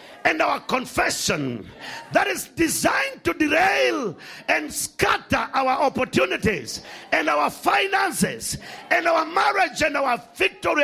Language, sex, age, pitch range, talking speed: English, male, 50-69, 270-345 Hz, 115 wpm